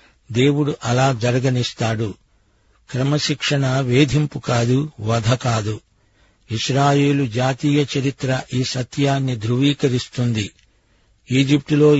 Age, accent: 60-79, native